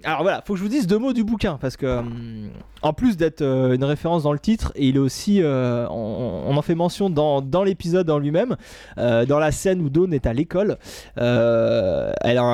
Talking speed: 205 wpm